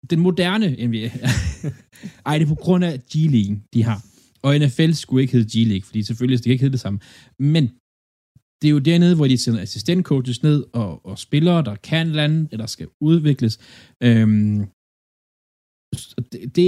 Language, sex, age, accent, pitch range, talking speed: Danish, male, 20-39, native, 110-140 Hz, 175 wpm